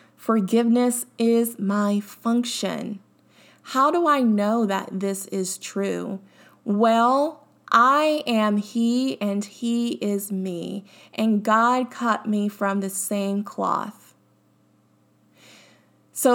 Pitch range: 195-245 Hz